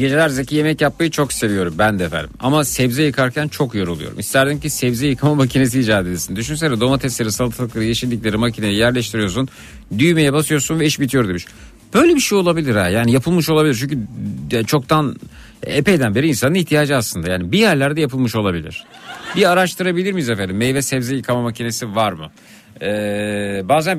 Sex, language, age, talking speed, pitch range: male, Turkish, 50-69, 160 wpm, 105-145 Hz